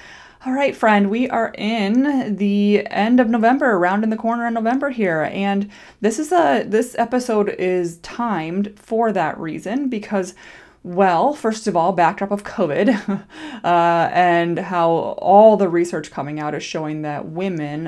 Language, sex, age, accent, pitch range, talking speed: English, female, 20-39, American, 170-215 Hz, 160 wpm